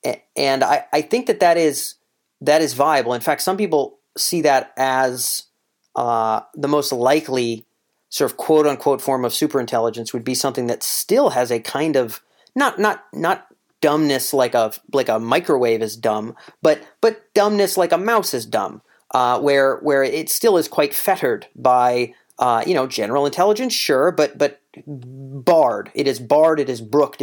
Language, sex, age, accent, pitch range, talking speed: English, male, 30-49, American, 125-150 Hz, 175 wpm